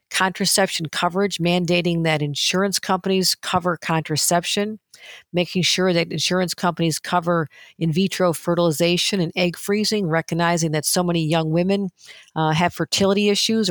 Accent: American